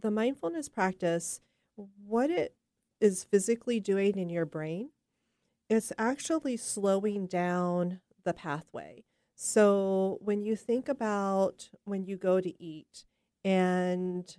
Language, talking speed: English, 115 wpm